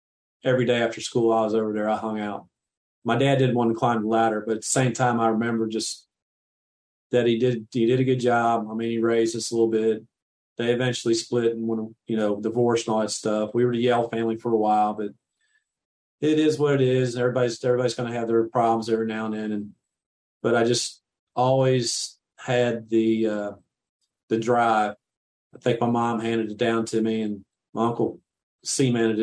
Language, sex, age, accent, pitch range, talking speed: English, male, 40-59, American, 110-125 Hz, 210 wpm